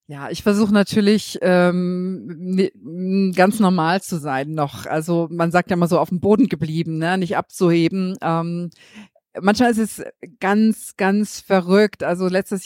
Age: 40-59